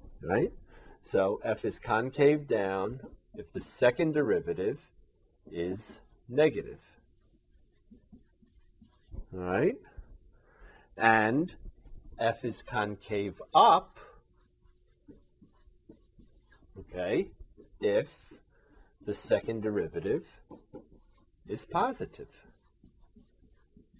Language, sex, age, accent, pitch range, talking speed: English, male, 50-69, American, 100-135 Hz, 65 wpm